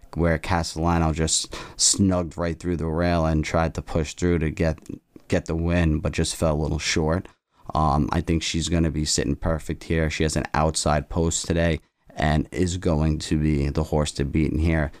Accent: American